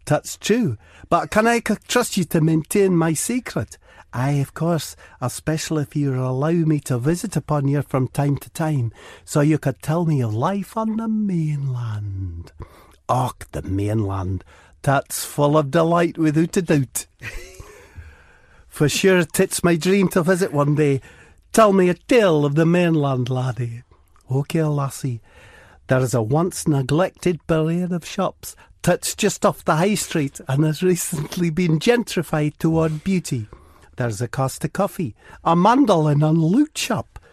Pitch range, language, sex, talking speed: 130-180 Hz, English, male, 155 wpm